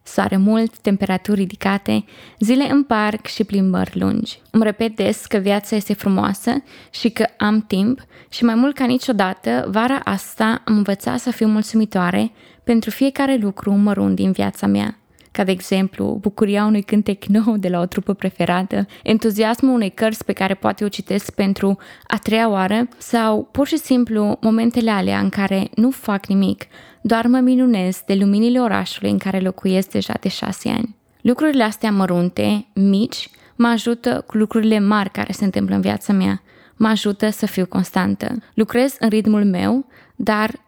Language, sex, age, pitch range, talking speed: Romanian, female, 20-39, 195-230 Hz, 165 wpm